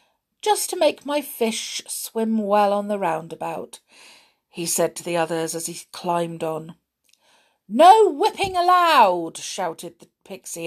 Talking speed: 140 wpm